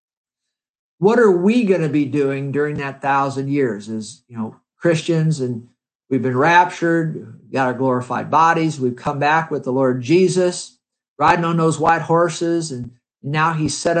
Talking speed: 165 wpm